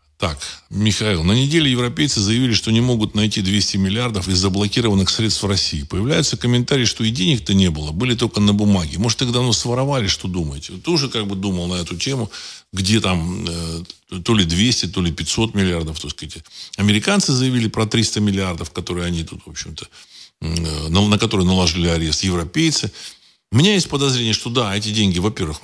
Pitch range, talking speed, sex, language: 85-120 Hz, 185 wpm, male, Russian